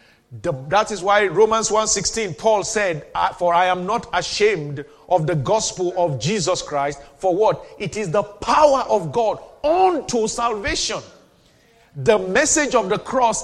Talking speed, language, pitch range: 150 wpm, English, 175-235 Hz